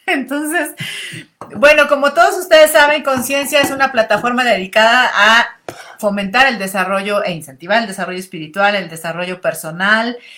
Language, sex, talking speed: Spanish, female, 135 wpm